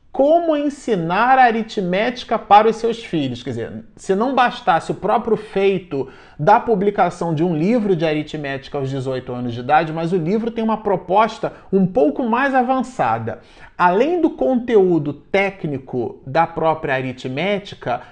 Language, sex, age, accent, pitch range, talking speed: Portuguese, male, 40-59, Brazilian, 150-220 Hz, 145 wpm